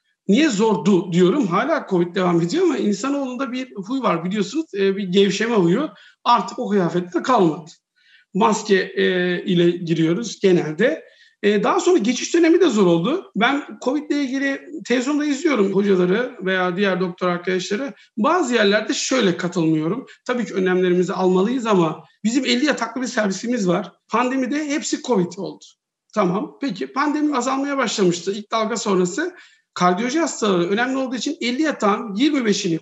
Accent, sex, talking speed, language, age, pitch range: native, male, 140 wpm, Turkish, 50-69, 185-275 Hz